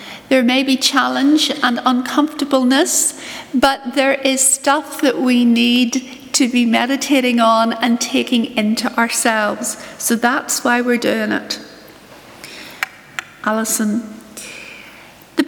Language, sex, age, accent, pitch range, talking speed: English, female, 60-79, British, 240-290 Hz, 110 wpm